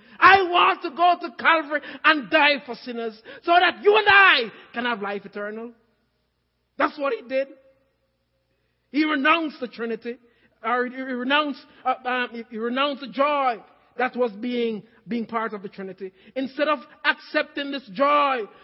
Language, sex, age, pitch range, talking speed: English, male, 50-69, 225-300 Hz, 160 wpm